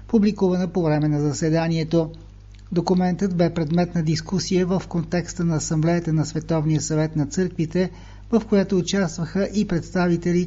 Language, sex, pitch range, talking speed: Bulgarian, male, 155-180 Hz, 140 wpm